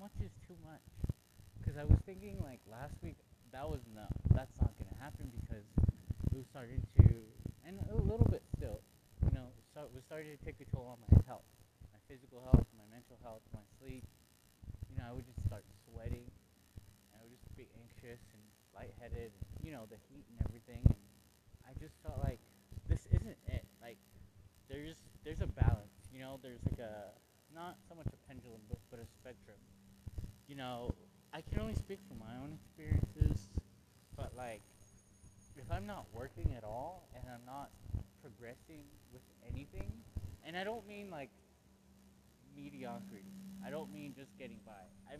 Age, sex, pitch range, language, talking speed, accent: 20-39, male, 100-130 Hz, English, 175 wpm, American